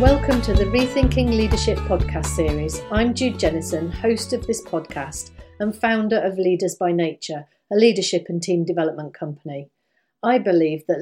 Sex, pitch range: female, 165-215 Hz